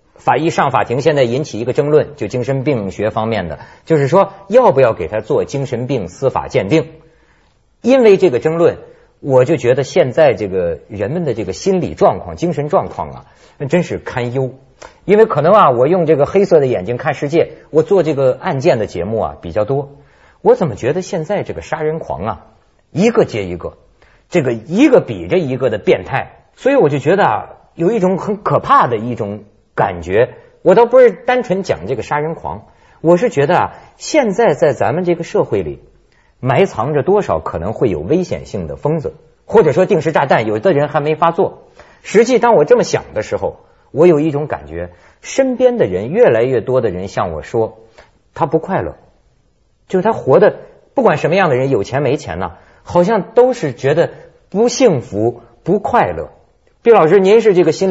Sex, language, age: male, Chinese, 50-69